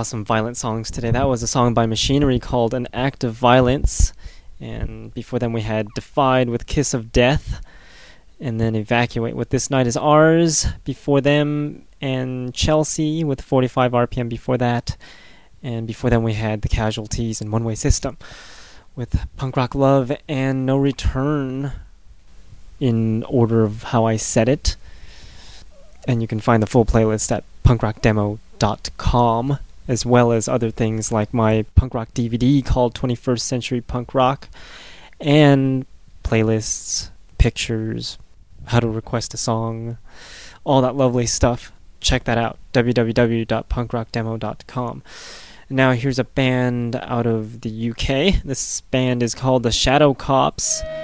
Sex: male